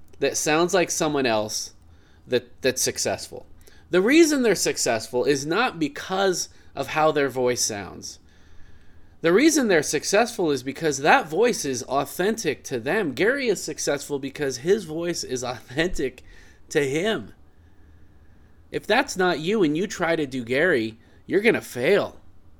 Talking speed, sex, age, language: 145 wpm, male, 30-49, English